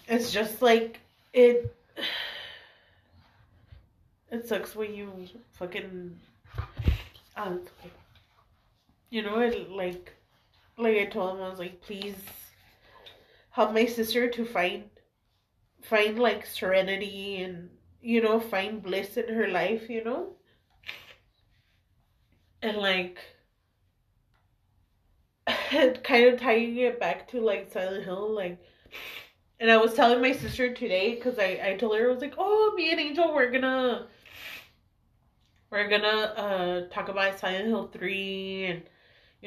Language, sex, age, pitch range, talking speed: English, female, 20-39, 180-225 Hz, 125 wpm